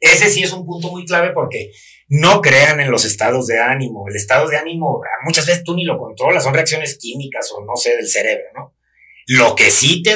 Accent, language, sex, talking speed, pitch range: Mexican, Spanish, male, 225 wpm, 120-170 Hz